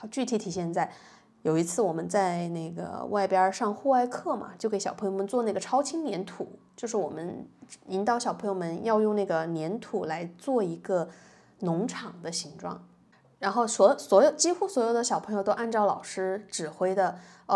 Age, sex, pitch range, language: 20-39, female, 195-255 Hz, Chinese